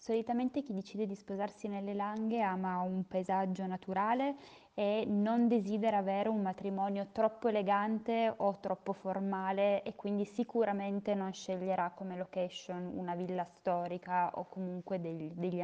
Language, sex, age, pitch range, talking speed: Italian, female, 20-39, 180-210 Hz, 140 wpm